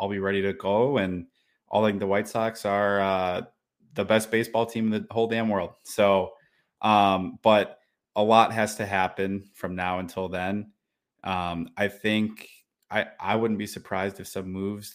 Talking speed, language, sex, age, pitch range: 180 wpm, English, male, 20-39, 95-110 Hz